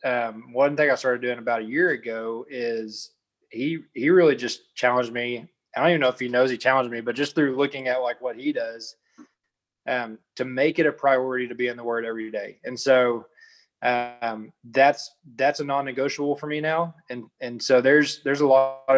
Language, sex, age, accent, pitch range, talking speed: English, male, 20-39, American, 120-145 Hz, 210 wpm